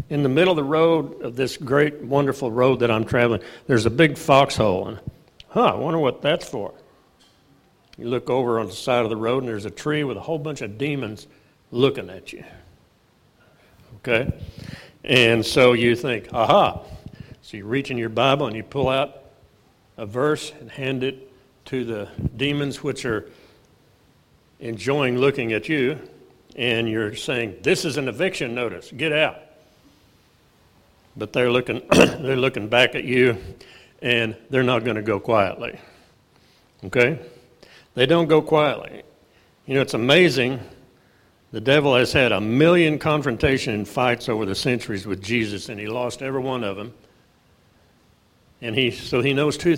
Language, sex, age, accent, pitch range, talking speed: English, male, 60-79, American, 115-140 Hz, 165 wpm